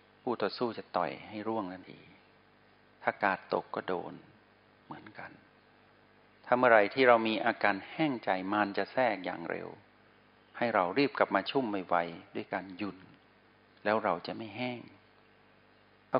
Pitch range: 95-110 Hz